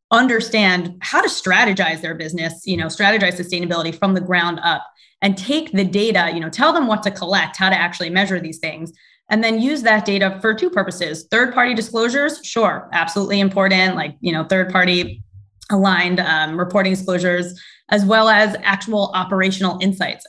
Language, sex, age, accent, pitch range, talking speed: English, female, 20-39, American, 175-210 Hz, 170 wpm